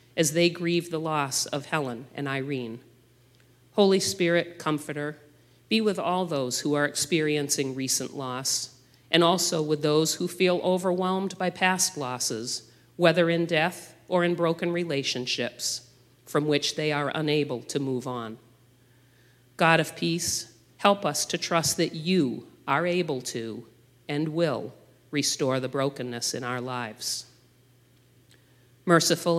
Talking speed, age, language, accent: 135 wpm, 50-69, English, American